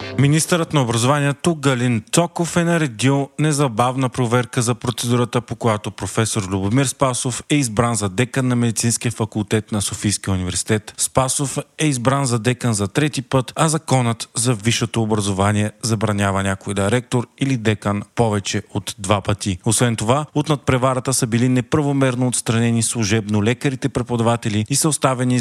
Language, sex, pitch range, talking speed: Bulgarian, male, 110-135 Hz, 150 wpm